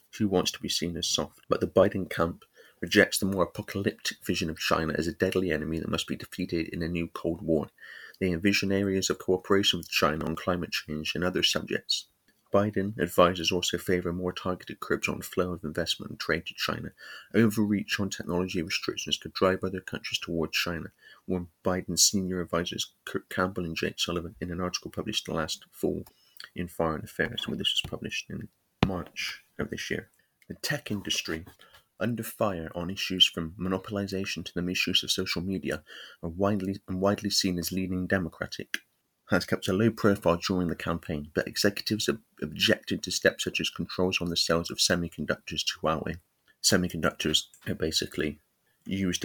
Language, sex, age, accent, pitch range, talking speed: English, male, 30-49, British, 85-95 Hz, 180 wpm